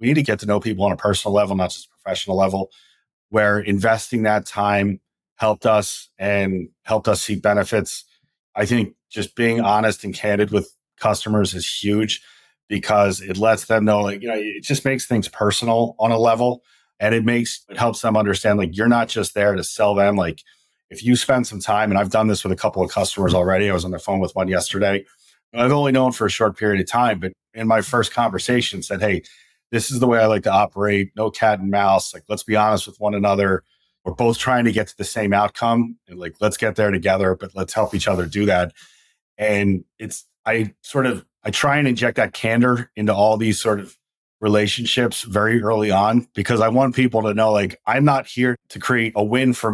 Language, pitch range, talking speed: English, 100-115 Hz, 225 wpm